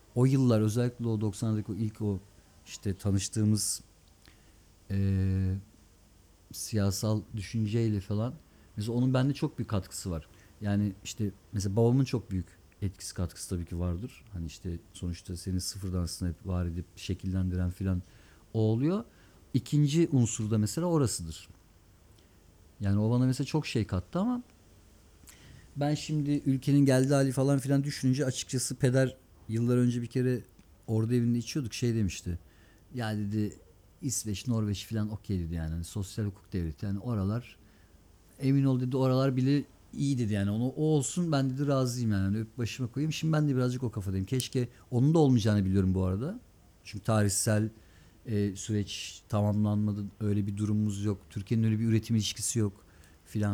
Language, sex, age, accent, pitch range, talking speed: Turkish, male, 50-69, native, 95-125 Hz, 155 wpm